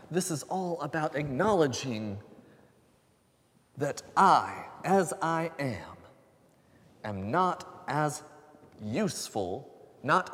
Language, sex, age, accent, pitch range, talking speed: English, male, 30-49, American, 105-145 Hz, 85 wpm